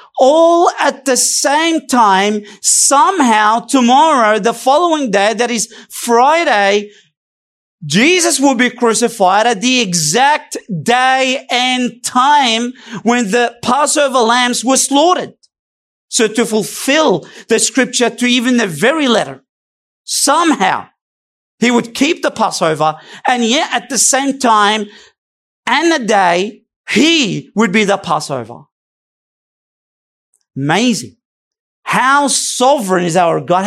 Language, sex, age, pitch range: English, male, 40-59, 190-270 Hz